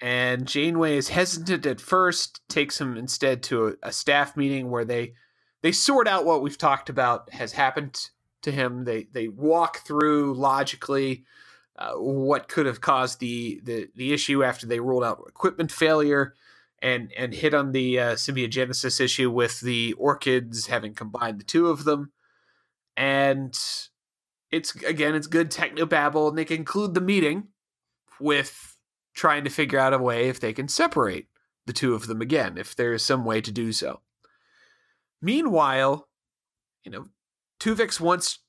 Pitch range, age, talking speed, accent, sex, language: 125-170 Hz, 30-49, 160 wpm, American, male, English